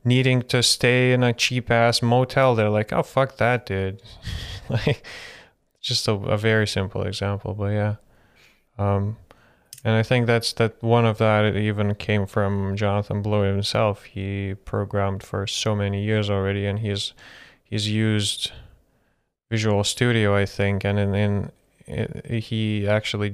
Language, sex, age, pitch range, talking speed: English, male, 20-39, 100-120 Hz, 150 wpm